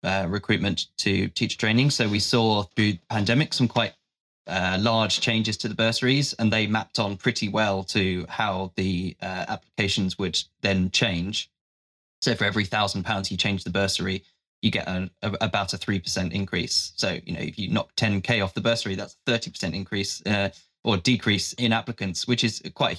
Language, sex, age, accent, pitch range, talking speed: English, male, 20-39, British, 95-115 Hz, 195 wpm